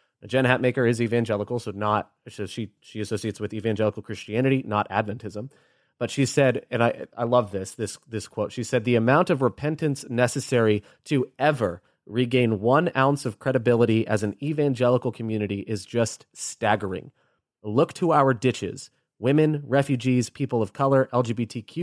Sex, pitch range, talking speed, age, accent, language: male, 105-130 Hz, 160 wpm, 30-49, American, English